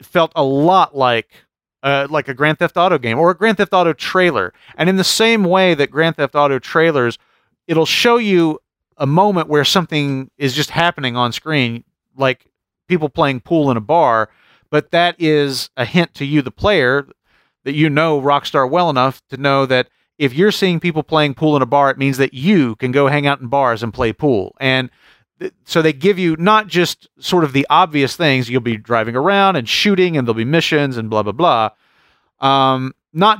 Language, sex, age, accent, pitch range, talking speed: English, male, 40-59, American, 120-160 Hz, 205 wpm